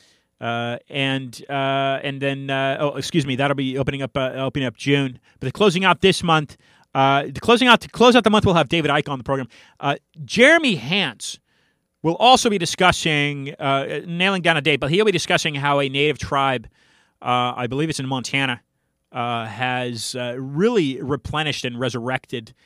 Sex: male